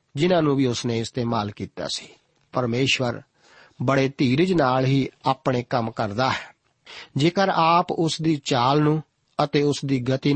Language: Punjabi